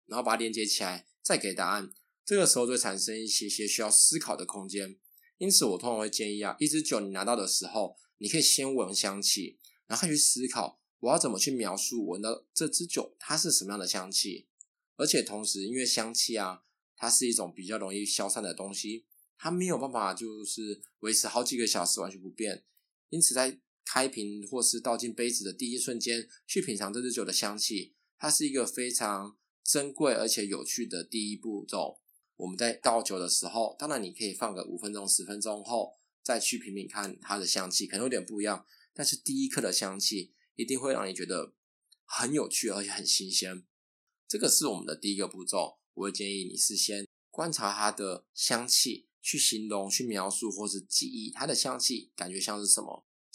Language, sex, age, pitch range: Chinese, male, 20-39, 100-125 Hz